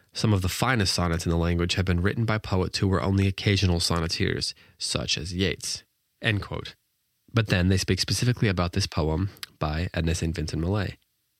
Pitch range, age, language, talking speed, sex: 90-115 Hz, 20-39, English, 190 wpm, male